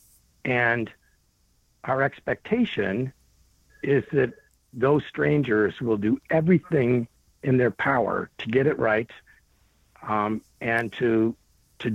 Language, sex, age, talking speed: English, male, 60-79, 105 wpm